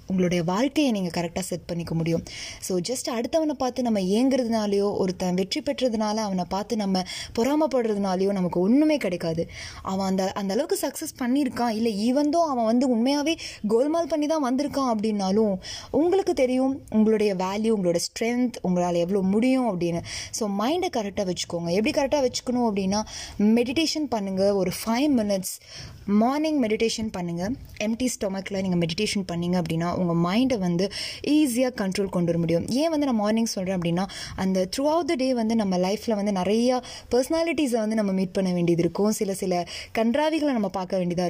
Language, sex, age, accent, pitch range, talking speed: Tamil, female, 20-39, native, 180-245 Hz, 130 wpm